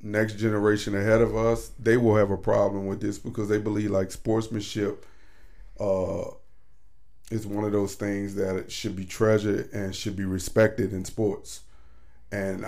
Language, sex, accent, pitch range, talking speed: English, male, American, 100-120 Hz, 160 wpm